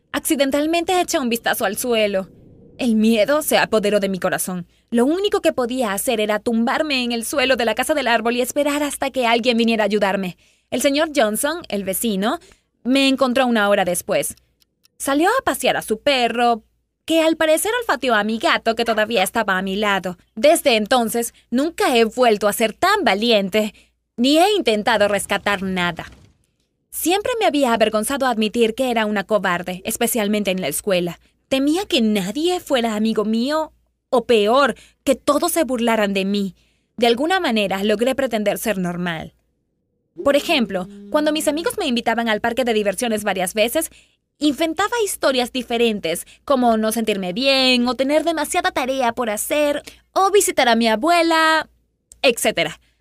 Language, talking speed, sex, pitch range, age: Spanish, 165 wpm, female, 215-295 Hz, 20-39